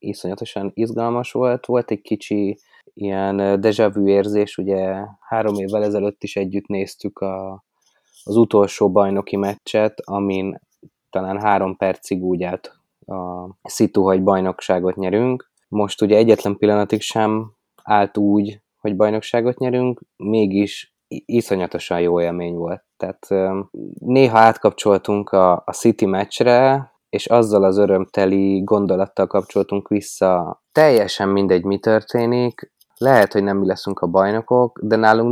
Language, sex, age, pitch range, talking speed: Hungarian, male, 20-39, 95-110 Hz, 125 wpm